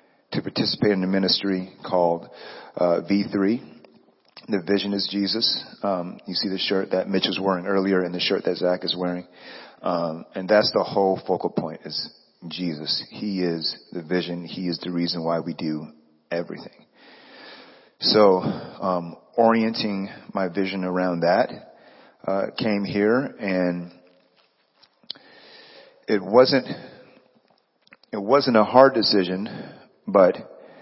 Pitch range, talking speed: 90-100 Hz, 135 wpm